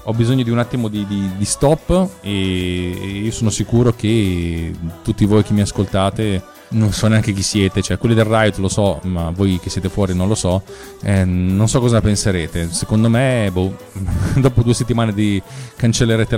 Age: 20-39